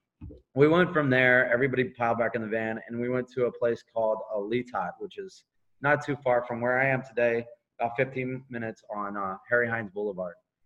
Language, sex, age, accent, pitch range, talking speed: English, male, 20-39, American, 115-140 Hz, 210 wpm